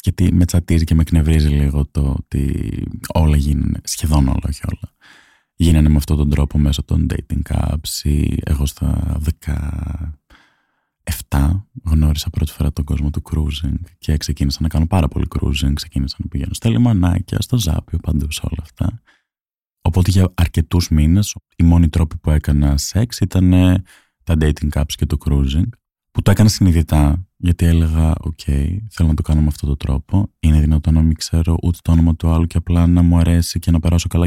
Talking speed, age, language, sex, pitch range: 180 wpm, 20-39, Greek, male, 75-90 Hz